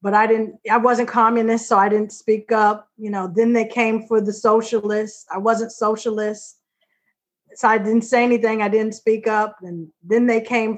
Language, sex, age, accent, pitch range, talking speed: English, female, 40-59, American, 210-245 Hz, 195 wpm